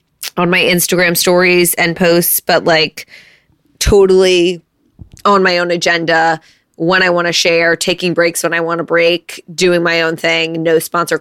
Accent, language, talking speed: American, English, 155 wpm